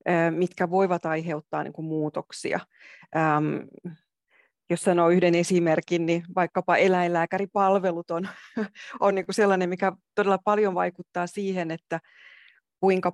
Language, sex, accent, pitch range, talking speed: Finnish, female, native, 165-190 Hz, 120 wpm